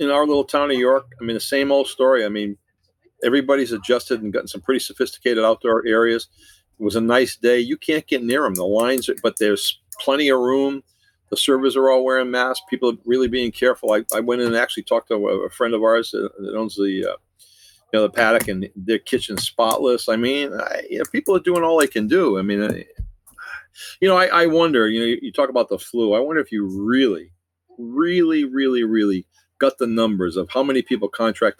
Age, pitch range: 50-69, 100-130 Hz